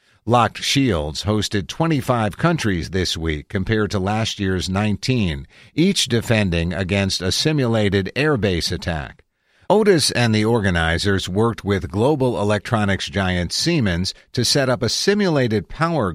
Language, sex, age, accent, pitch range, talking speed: English, male, 50-69, American, 90-125 Hz, 130 wpm